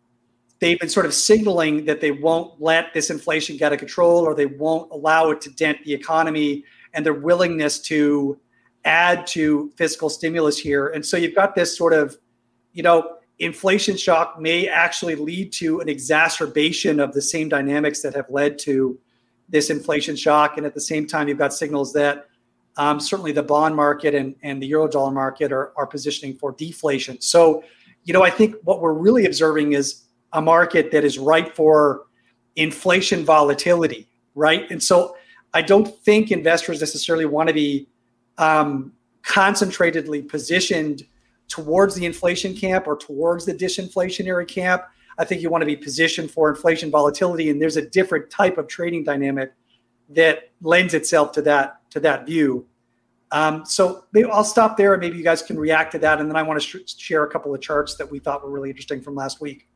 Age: 40-59